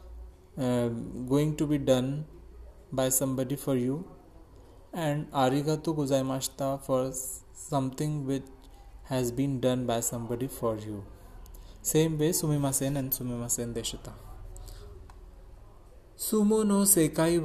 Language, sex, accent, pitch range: Japanese, male, Indian, 115-145 Hz